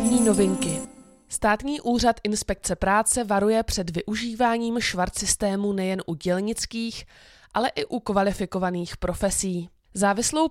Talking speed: 105 wpm